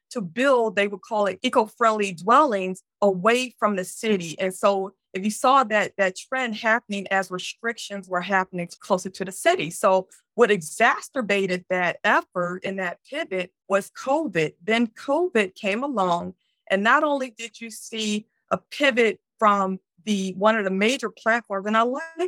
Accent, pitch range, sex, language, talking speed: American, 185-230 Hz, female, English, 165 wpm